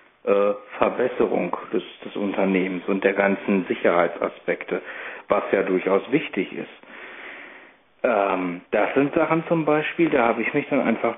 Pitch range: 100-150 Hz